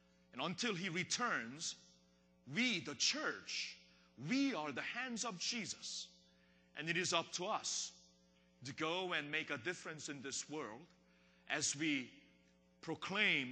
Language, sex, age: Korean, male, 40-59